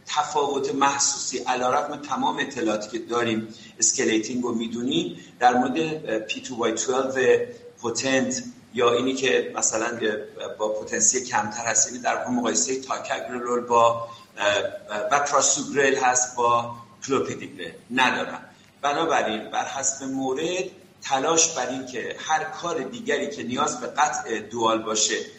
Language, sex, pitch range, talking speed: Persian, male, 115-155 Hz, 125 wpm